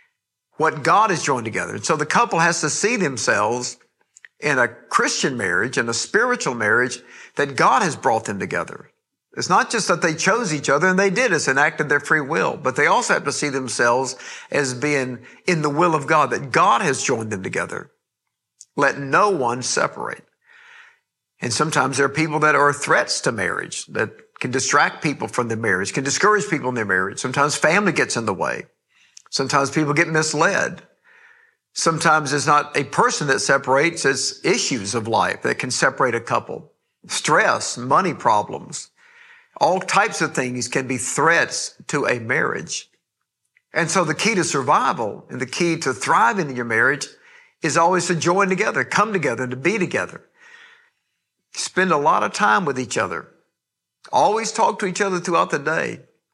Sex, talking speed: male, 180 wpm